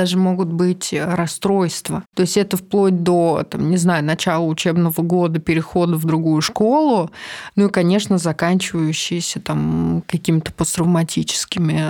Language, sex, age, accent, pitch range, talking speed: Russian, female, 20-39, native, 170-195 Hz, 130 wpm